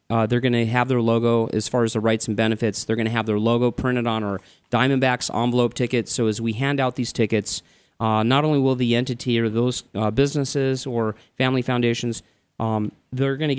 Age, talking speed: 30-49, 220 wpm